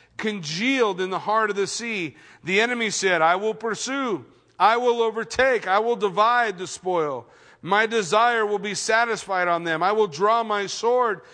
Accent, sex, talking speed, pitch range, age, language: American, male, 175 wpm, 150-220 Hz, 40-59, English